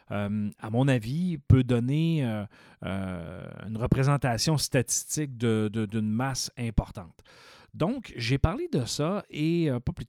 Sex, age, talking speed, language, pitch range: male, 40-59, 145 wpm, French, 110-140 Hz